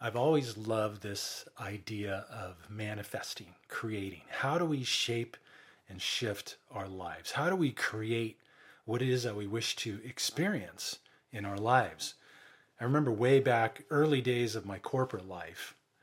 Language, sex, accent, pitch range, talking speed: English, male, American, 105-135 Hz, 155 wpm